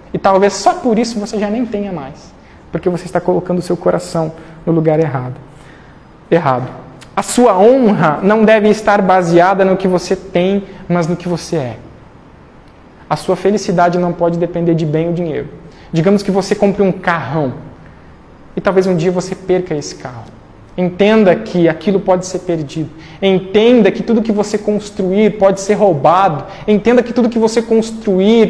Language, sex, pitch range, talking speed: Portuguese, male, 170-215 Hz, 175 wpm